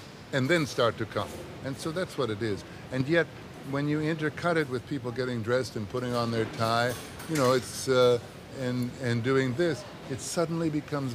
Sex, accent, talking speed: male, American, 200 wpm